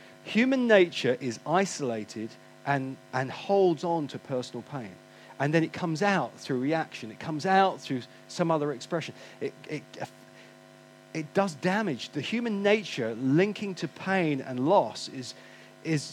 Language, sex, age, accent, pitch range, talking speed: English, male, 40-59, British, 135-195 Hz, 145 wpm